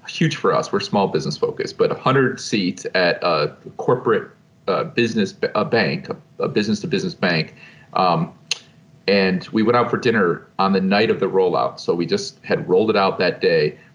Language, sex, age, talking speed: English, male, 40-59, 195 wpm